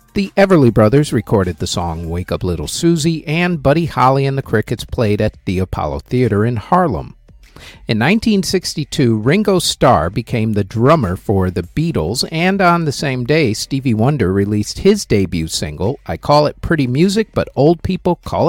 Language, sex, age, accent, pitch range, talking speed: English, male, 50-69, American, 100-160 Hz, 170 wpm